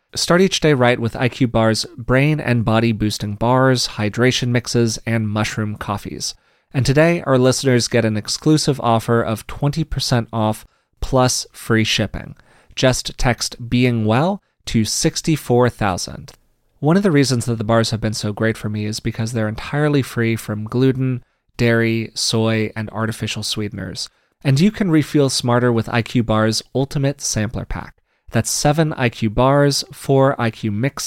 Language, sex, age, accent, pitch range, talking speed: English, male, 30-49, American, 110-140 Hz, 155 wpm